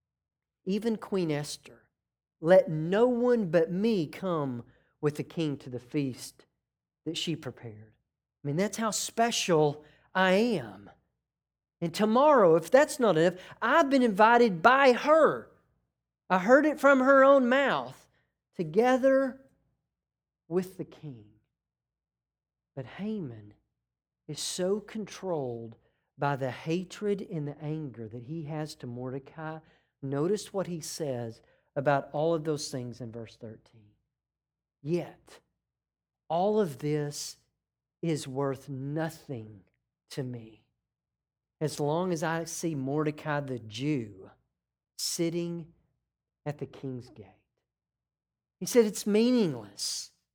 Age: 40-59